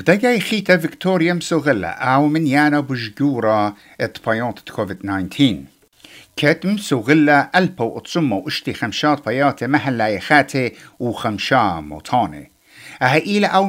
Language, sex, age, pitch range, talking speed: English, male, 60-79, 115-170 Hz, 85 wpm